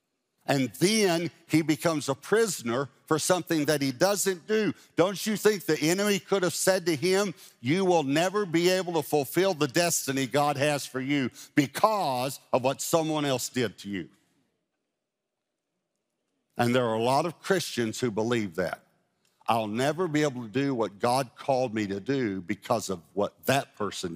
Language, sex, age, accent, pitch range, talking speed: English, male, 50-69, American, 120-175 Hz, 175 wpm